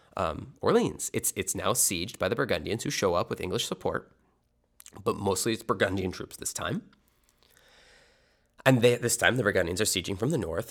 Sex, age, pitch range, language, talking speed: male, 20-39, 85-105 Hz, English, 185 wpm